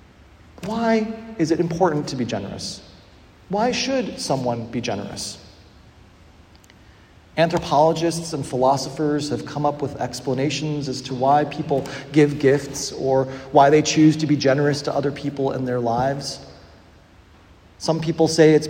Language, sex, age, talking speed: English, male, 40-59, 140 wpm